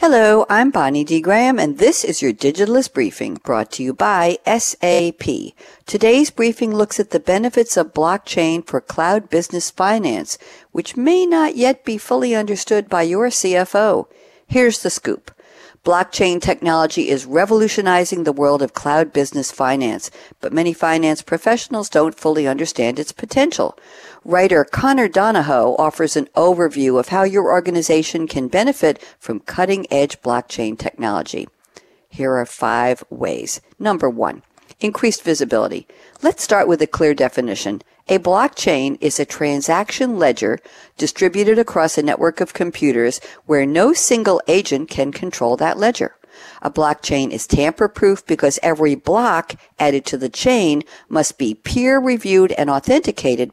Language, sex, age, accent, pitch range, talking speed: English, female, 60-79, American, 145-215 Hz, 140 wpm